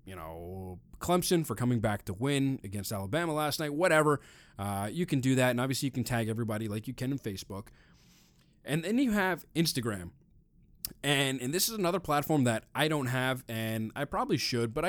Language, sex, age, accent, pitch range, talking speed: English, male, 20-39, American, 110-155 Hz, 200 wpm